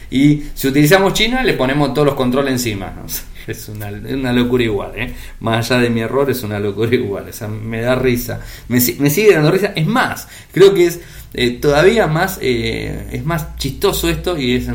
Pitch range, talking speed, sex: 115-150 Hz, 215 wpm, male